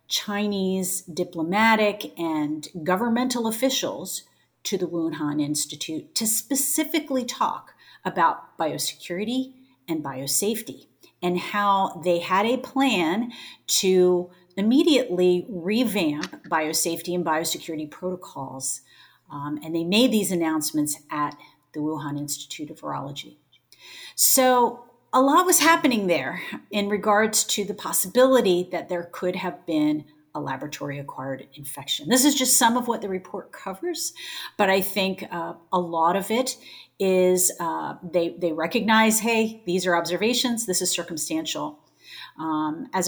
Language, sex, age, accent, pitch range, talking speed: English, female, 40-59, American, 165-230 Hz, 125 wpm